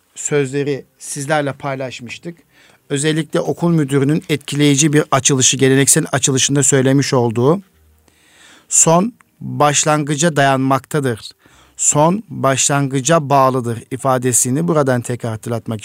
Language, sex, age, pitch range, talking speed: Turkish, male, 50-69, 130-150 Hz, 85 wpm